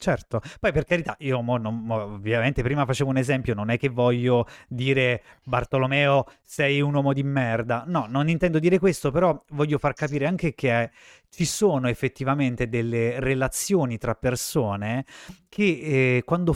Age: 30-49